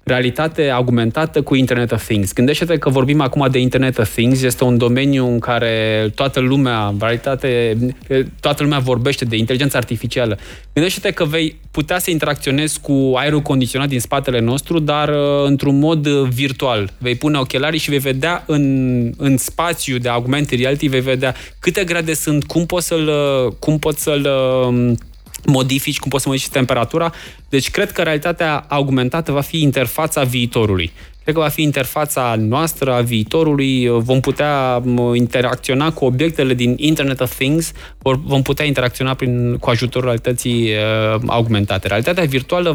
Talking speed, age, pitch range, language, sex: 155 wpm, 20-39, 125-150 Hz, Romanian, male